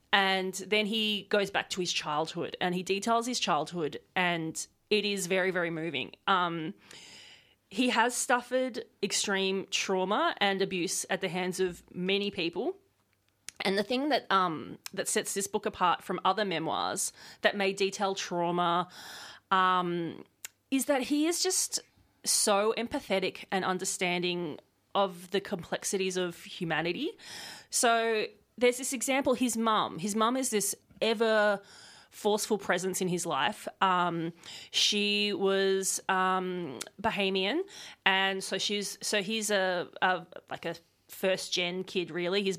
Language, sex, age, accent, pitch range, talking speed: English, female, 30-49, Australian, 180-210 Hz, 140 wpm